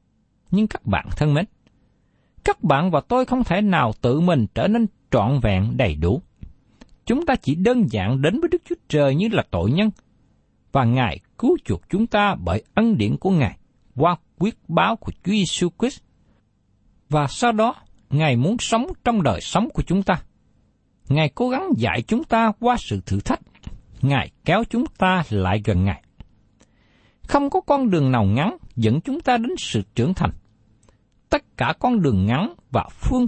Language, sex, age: Vietnamese, male, 60-79